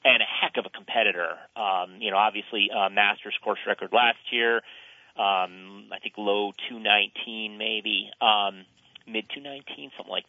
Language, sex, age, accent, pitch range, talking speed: English, male, 40-59, American, 105-130 Hz, 150 wpm